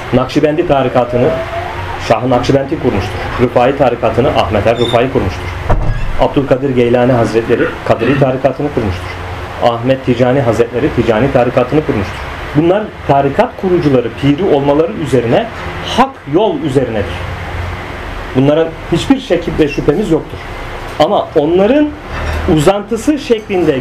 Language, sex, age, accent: Turkish, male, 40-59, native